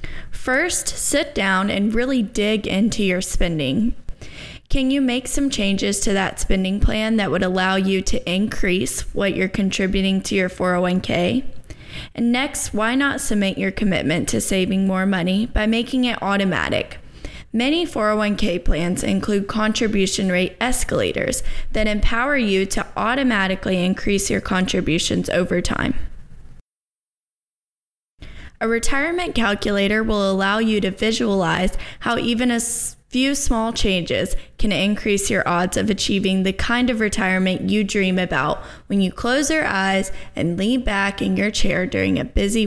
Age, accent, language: 10-29, American, English